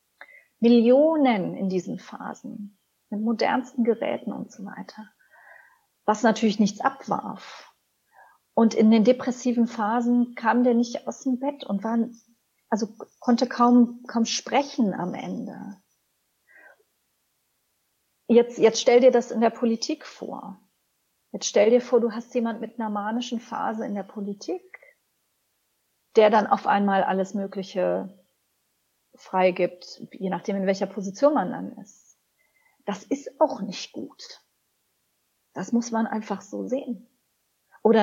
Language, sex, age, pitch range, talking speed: German, female, 40-59, 200-245 Hz, 135 wpm